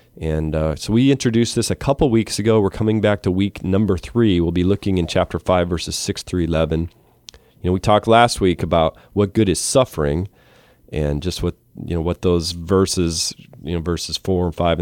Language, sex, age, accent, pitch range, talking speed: English, male, 40-59, American, 80-100 Hz, 210 wpm